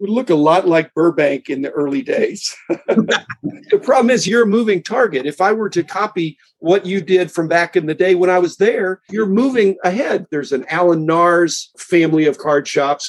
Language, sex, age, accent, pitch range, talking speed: English, male, 50-69, American, 150-210 Hz, 205 wpm